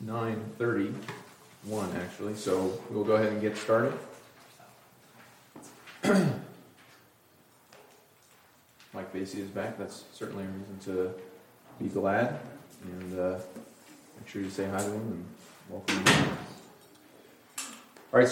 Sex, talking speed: male, 110 wpm